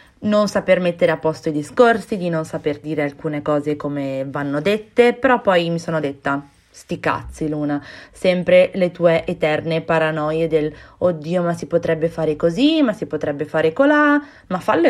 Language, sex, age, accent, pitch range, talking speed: Italian, female, 20-39, native, 155-190 Hz, 175 wpm